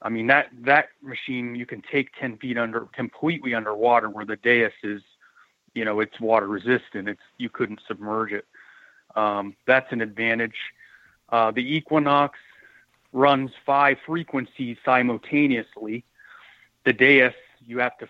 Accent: American